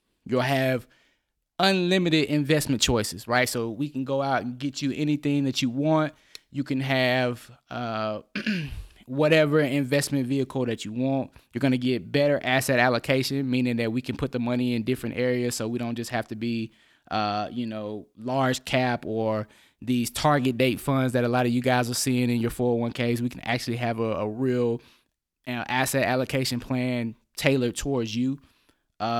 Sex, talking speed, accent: male, 180 wpm, American